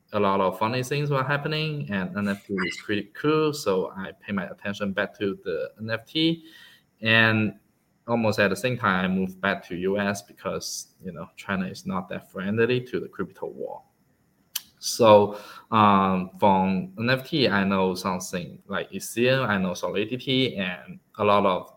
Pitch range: 100-125 Hz